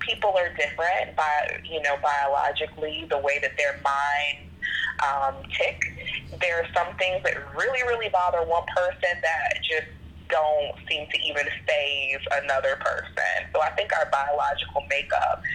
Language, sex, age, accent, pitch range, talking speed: English, female, 20-39, American, 140-185 Hz, 150 wpm